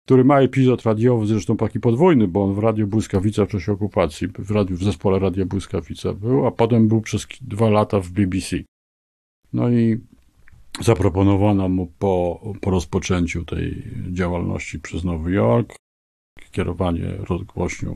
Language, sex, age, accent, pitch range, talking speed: Polish, male, 50-69, native, 90-110 Hz, 140 wpm